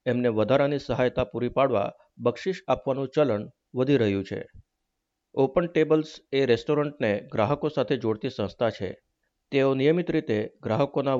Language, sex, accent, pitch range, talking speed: Gujarati, male, native, 115-145 Hz, 130 wpm